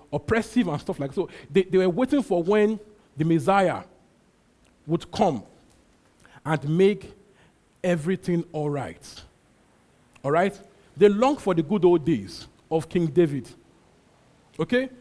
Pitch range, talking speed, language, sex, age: 165-210 Hz, 130 wpm, English, male, 40-59